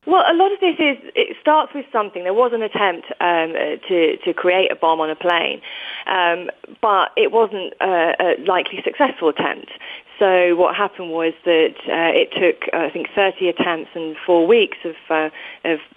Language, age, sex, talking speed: English, 30-49, female, 190 wpm